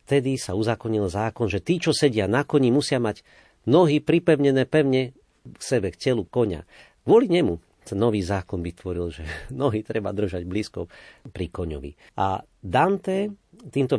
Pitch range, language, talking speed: 85-135 Hz, Slovak, 155 wpm